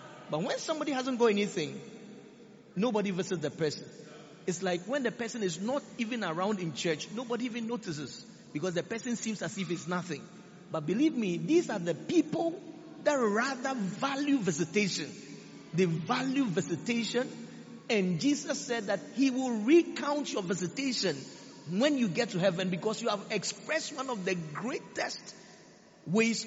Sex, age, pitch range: male, 50-69, 180-235 Hz